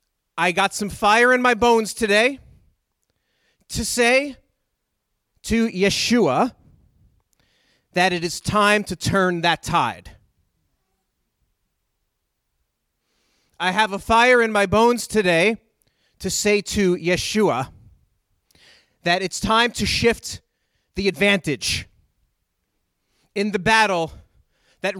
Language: English